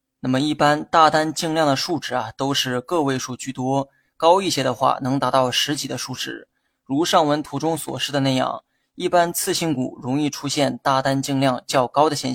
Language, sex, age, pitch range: Chinese, male, 20-39, 130-155 Hz